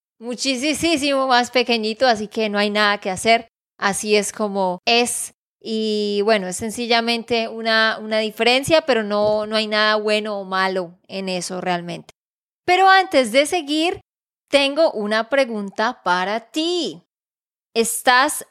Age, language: 20-39, Spanish